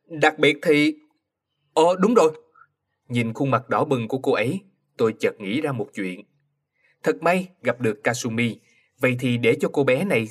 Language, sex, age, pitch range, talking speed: Vietnamese, male, 20-39, 125-170 Hz, 185 wpm